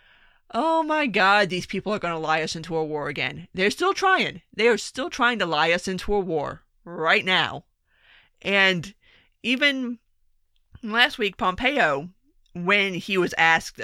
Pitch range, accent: 175-245 Hz, American